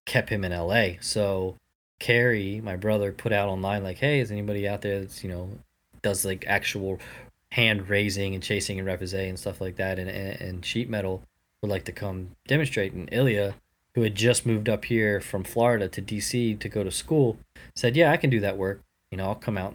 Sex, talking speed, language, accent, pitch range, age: male, 215 wpm, English, American, 95-110 Hz, 20-39